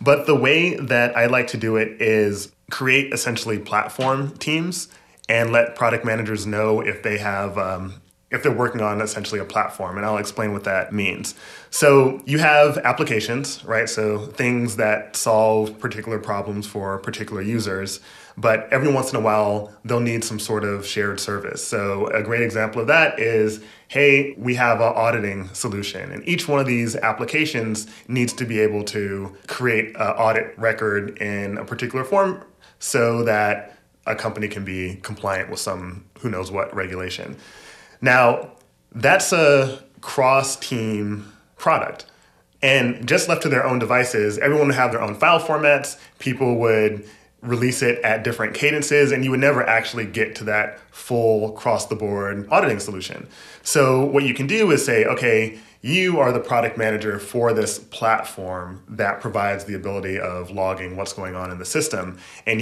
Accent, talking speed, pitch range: American, 170 wpm, 105-130 Hz